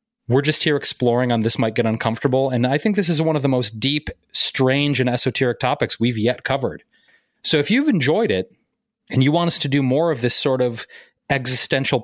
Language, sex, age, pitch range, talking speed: English, male, 30-49, 115-140 Hz, 215 wpm